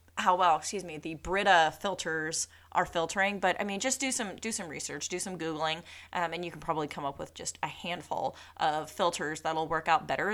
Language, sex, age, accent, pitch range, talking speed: English, female, 30-49, American, 160-210 Hz, 220 wpm